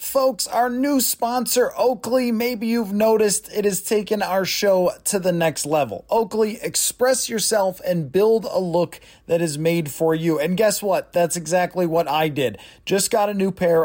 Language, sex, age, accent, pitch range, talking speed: English, male, 30-49, American, 165-210 Hz, 180 wpm